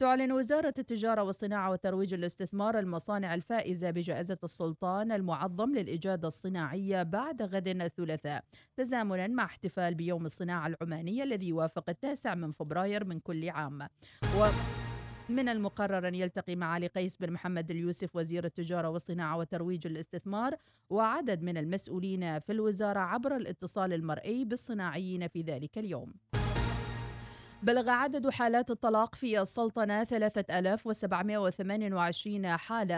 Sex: female